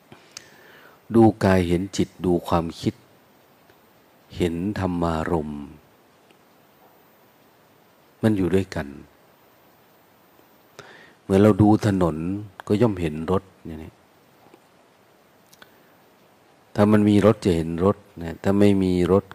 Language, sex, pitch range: Thai, male, 80-100 Hz